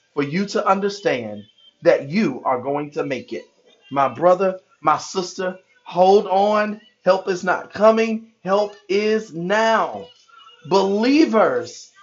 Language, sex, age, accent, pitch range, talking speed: English, male, 40-59, American, 160-225 Hz, 125 wpm